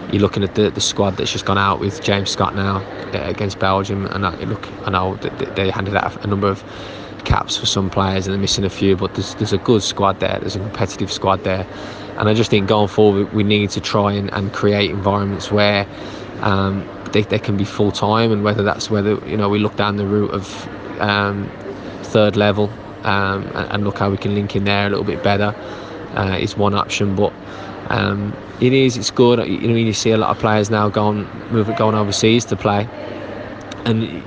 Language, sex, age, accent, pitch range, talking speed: English, male, 20-39, British, 100-105 Hz, 220 wpm